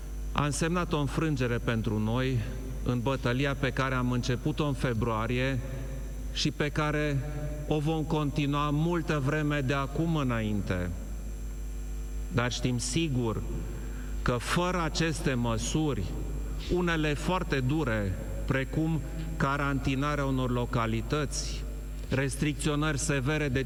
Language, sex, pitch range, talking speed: Romanian, male, 120-150 Hz, 105 wpm